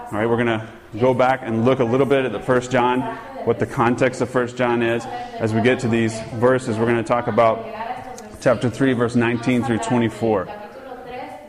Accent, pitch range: American, 120-150 Hz